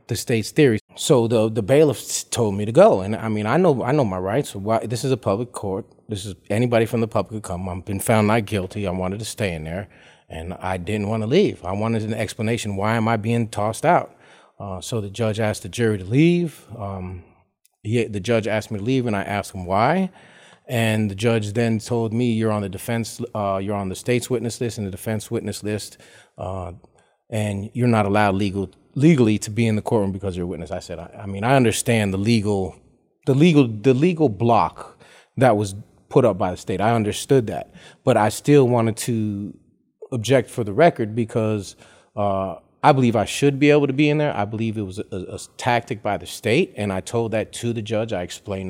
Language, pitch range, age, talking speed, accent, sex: English, 100-120 Hz, 30-49, 225 wpm, American, male